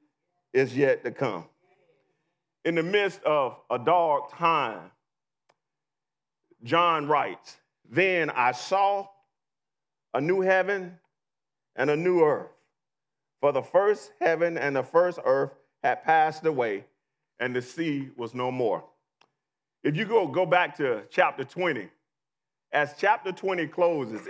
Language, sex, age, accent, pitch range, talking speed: English, male, 40-59, American, 150-215 Hz, 130 wpm